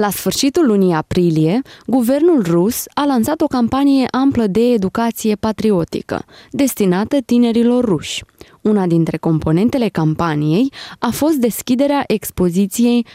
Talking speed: 115 wpm